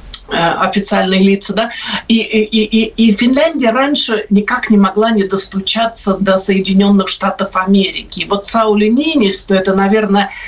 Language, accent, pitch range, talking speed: Russian, native, 195-220 Hz, 140 wpm